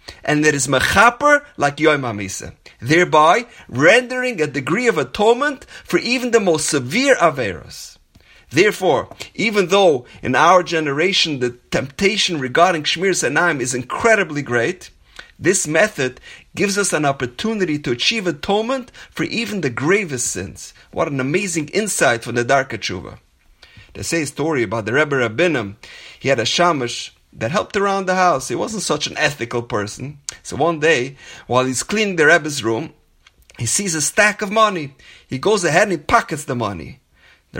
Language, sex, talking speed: English, male, 160 wpm